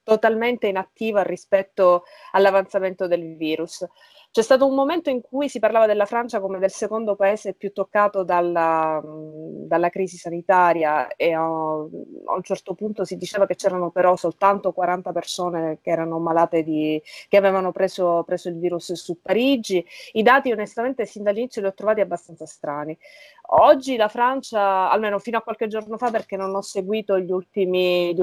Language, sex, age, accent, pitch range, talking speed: Italian, female, 20-39, native, 180-215 Hz, 165 wpm